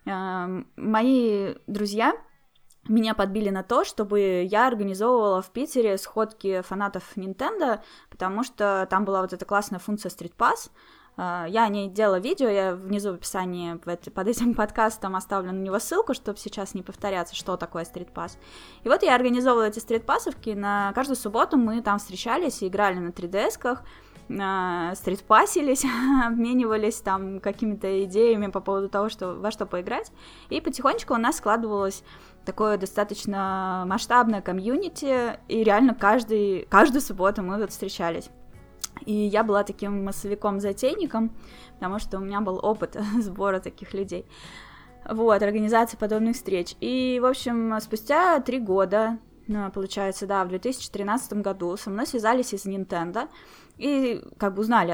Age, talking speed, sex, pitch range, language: 10-29, 145 wpm, female, 190-230 Hz, Russian